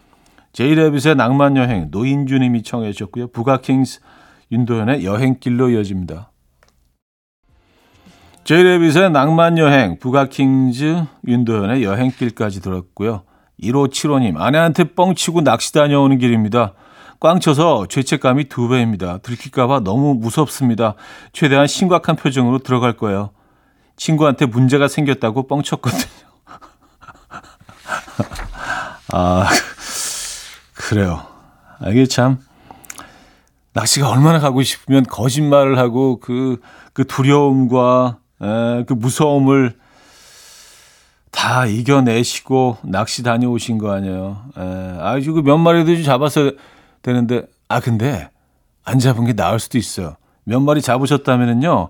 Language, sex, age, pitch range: Korean, male, 40-59, 115-140 Hz